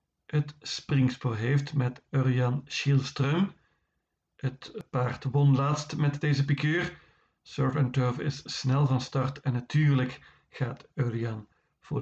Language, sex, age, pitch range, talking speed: Dutch, male, 50-69, 130-145 Hz, 125 wpm